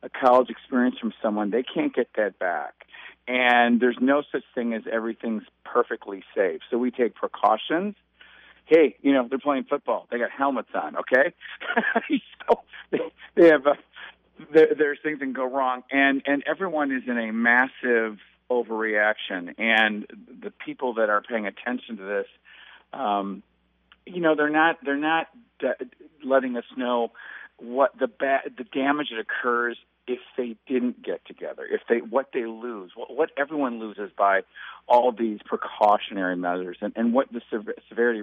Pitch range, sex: 115-150 Hz, male